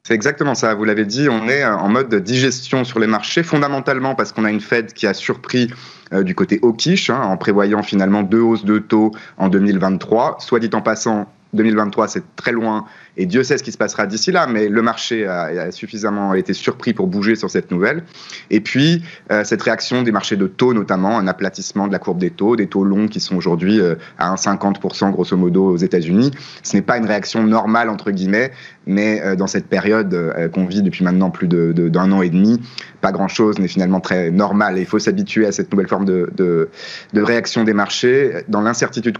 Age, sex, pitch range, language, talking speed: 30-49, male, 100-115 Hz, French, 220 wpm